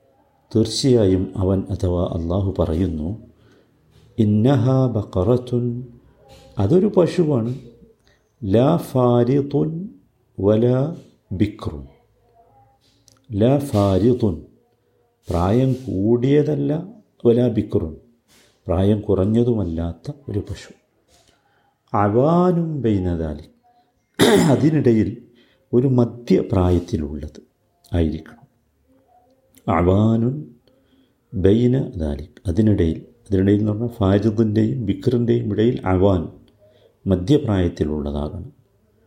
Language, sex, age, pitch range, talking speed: Malayalam, male, 50-69, 95-125 Hz, 70 wpm